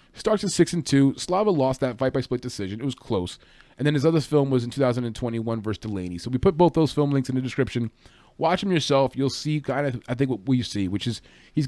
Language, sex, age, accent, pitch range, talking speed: English, male, 20-39, American, 115-150 Hz, 255 wpm